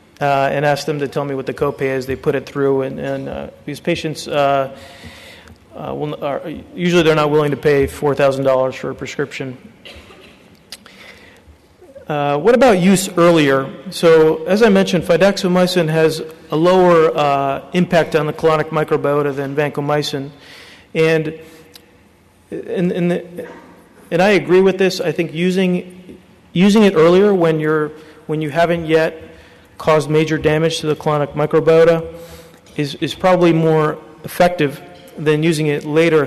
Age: 40-59